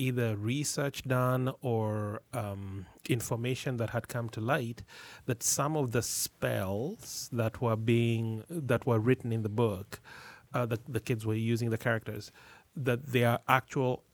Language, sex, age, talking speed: English, male, 30-49, 155 wpm